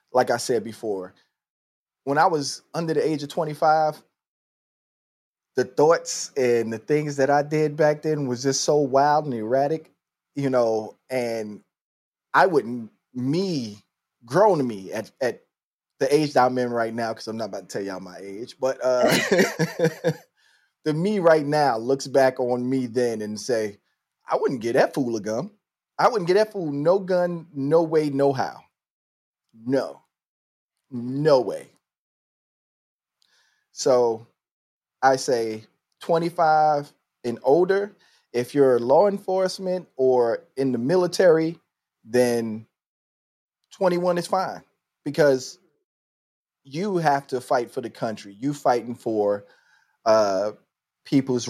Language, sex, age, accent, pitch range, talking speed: English, male, 20-39, American, 115-155 Hz, 140 wpm